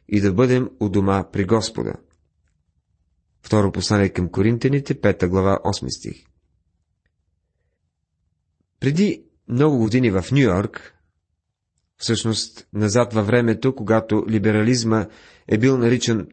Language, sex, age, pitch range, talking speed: Bulgarian, male, 30-49, 95-125 Hz, 105 wpm